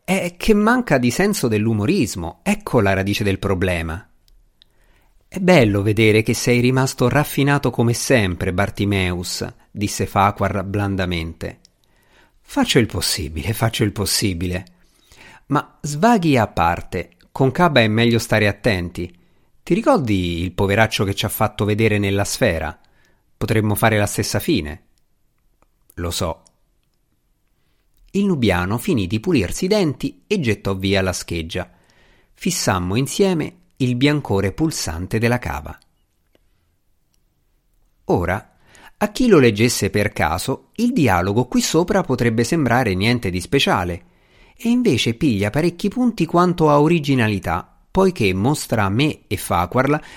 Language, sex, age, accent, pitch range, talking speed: Italian, male, 50-69, native, 95-145 Hz, 125 wpm